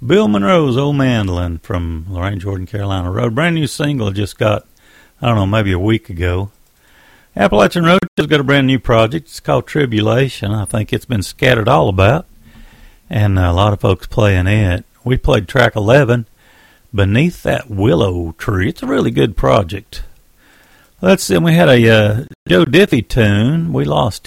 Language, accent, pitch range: English, American, 100-145 Hz